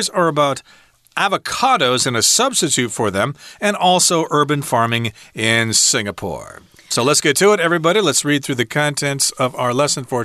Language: Chinese